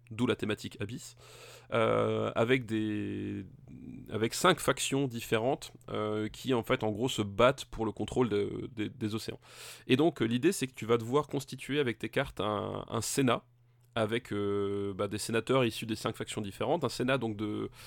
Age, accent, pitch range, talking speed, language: 20-39, French, 110-135 Hz, 190 wpm, French